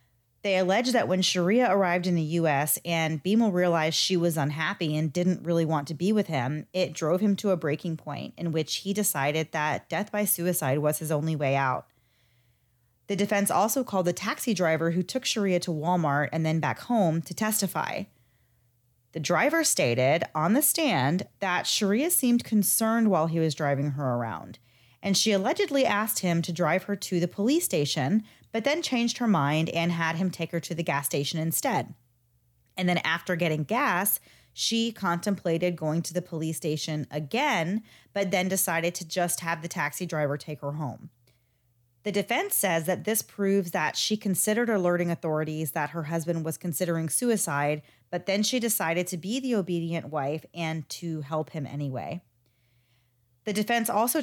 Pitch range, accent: 150-200 Hz, American